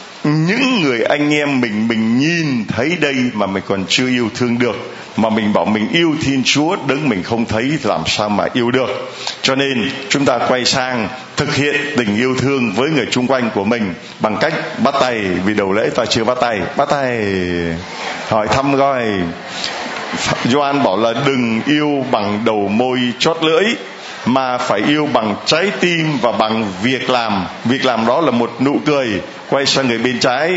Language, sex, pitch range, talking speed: Vietnamese, male, 115-155 Hz, 190 wpm